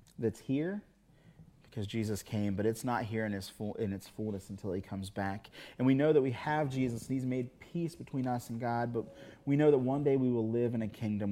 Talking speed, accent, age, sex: 235 wpm, American, 30-49, male